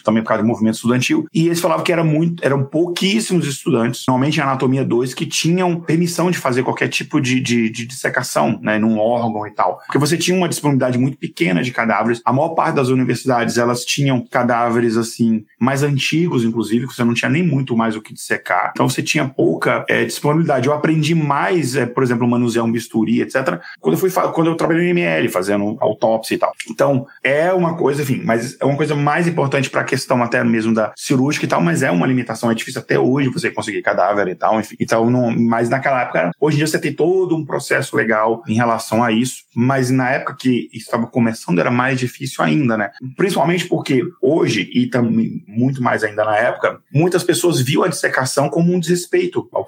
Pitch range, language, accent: 120-155 Hz, Portuguese, Brazilian